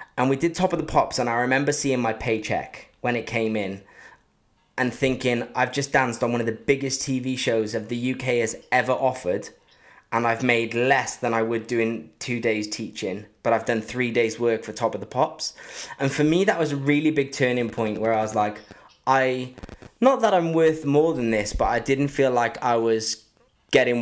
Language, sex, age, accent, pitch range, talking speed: English, male, 20-39, British, 115-145 Hz, 215 wpm